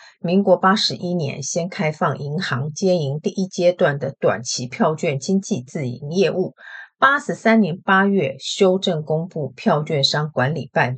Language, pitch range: Chinese, 145-195 Hz